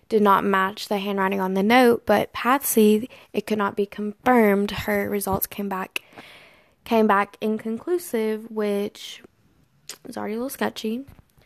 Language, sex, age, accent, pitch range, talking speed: English, female, 20-39, American, 200-225 Hz, 145 wpm